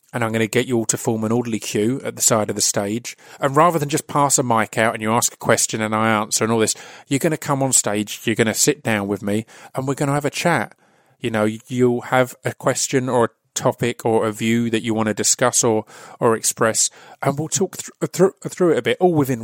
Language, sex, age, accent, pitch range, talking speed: English, male, 30-49, British, 110-130 Hz, 270 wpm